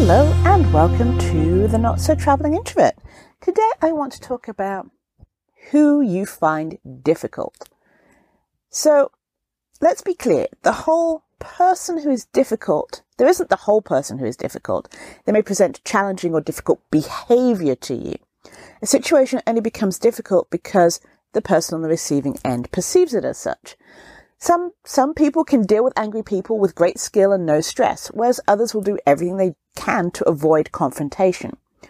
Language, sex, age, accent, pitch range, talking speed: English, female, 40-59, British, 160-265 Hz, 160 wpm